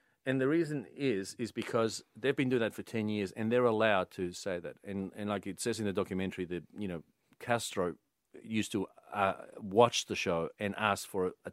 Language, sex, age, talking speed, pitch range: English, male, 40-59, 215 wpm, 95-110 Hz